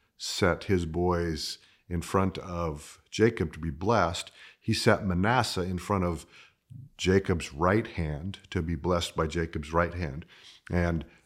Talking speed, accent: 145 wpm, American